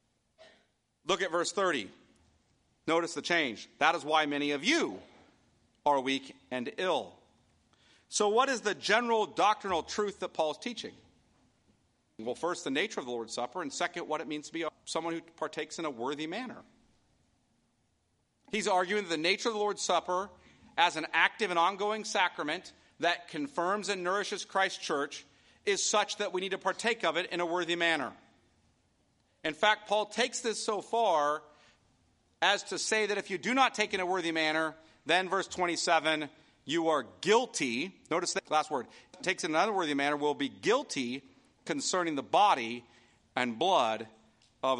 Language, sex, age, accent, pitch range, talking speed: English, male, 40-59, American, 145-200 Hz, 170 wpm